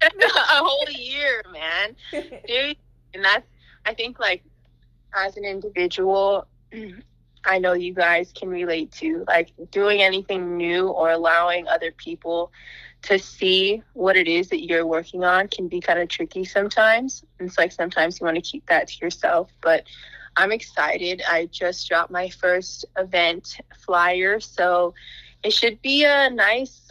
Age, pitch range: 20-39, 170-200 Hz